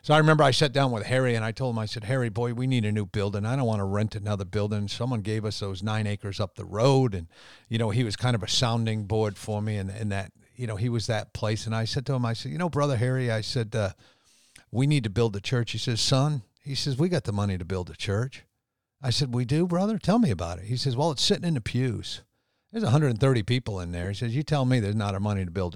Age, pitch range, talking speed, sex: 50-69, 105-130 Hz, 290 wpm, male